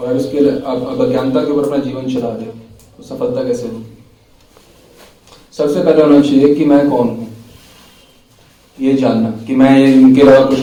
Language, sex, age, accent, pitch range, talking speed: Hindi, male, 40-59, native, 125-170 Hz, 160 wpm